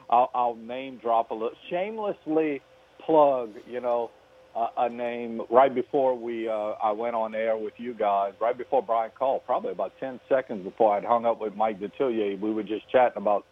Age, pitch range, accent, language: 60-79, 110-135 Hz, American, English